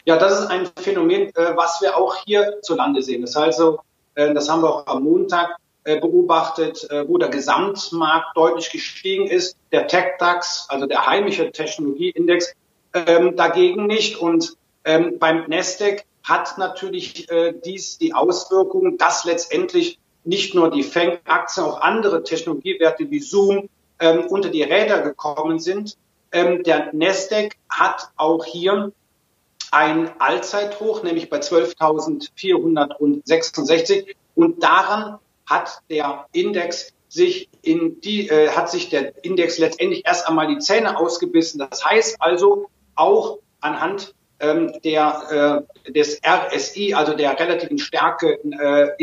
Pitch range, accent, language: 160-205 Hz, German, German